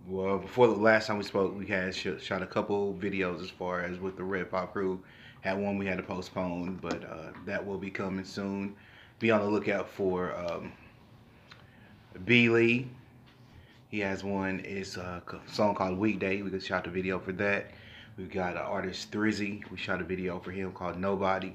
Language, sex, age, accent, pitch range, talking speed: English, male, 30-49, American, 95-105 Hz, 195 wpm